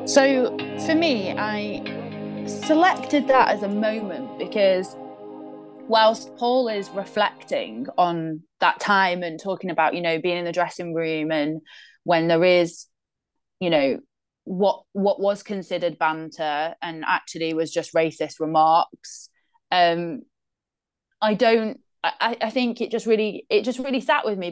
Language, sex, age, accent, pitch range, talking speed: English, female, 20-39, British, 170-220 Hz, 145 wpm